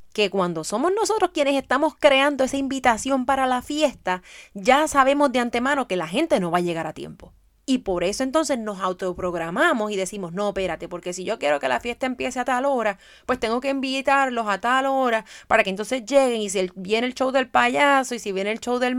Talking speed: 220 wpm